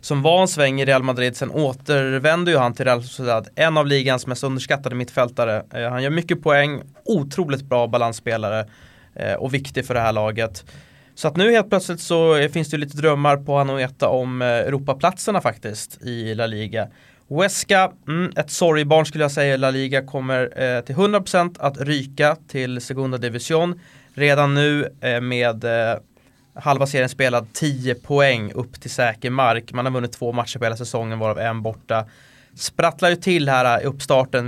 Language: English